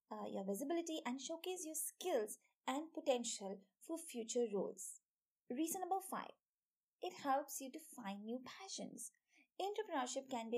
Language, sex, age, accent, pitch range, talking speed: English, female, 20-39, Indian, 235-320 Hz, 135 wpm